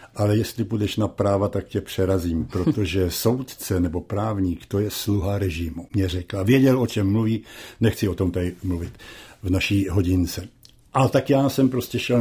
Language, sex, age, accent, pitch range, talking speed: Czech, male, 60-79, native, 95-120 Hz, 175 wpm